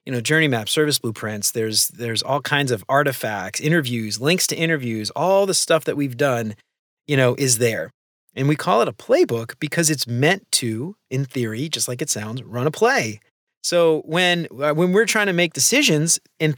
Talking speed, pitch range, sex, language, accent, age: 195 wpm, 125-170 Hz, male, English, American, 30-49